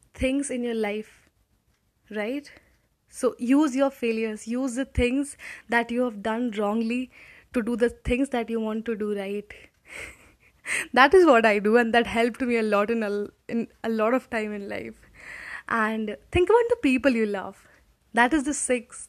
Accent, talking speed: native, 180 wpm